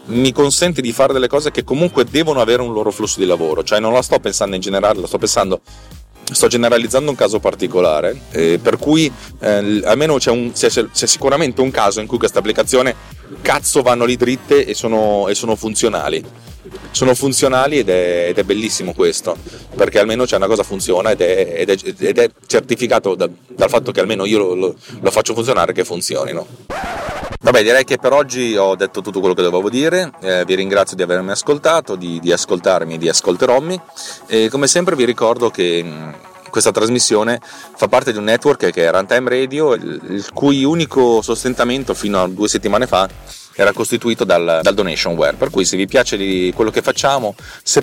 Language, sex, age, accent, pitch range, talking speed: Italian, male, 30-49, native, 100-140 Hz, 195 wpm